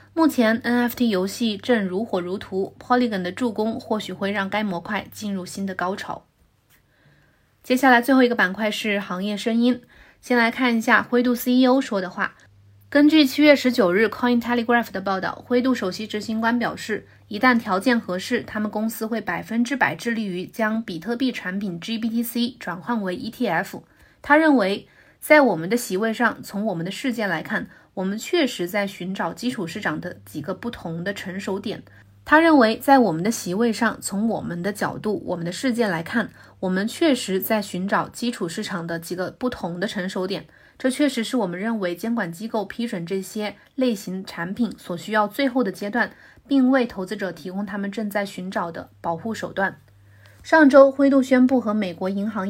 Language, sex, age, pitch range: Chinese, female, 20-39, 190-240 Hz